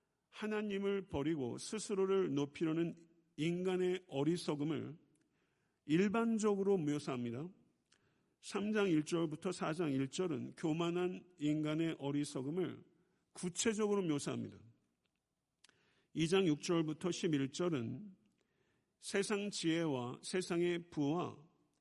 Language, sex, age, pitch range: Korean, male, 50-69, 145-185 Hz